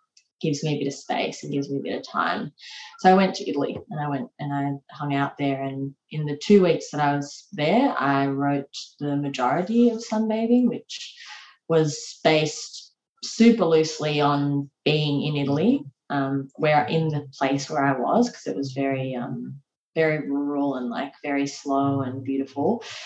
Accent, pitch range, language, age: Australian, 140-175 Hz, English, 20-39